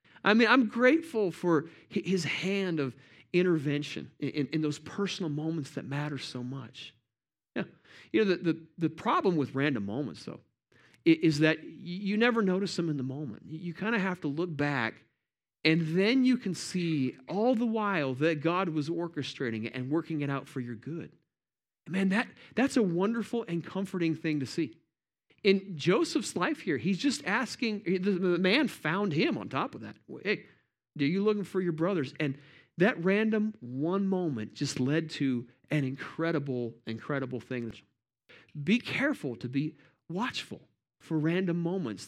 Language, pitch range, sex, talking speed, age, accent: English, 130-185 Hz, male, 170 wpm, 40-59, American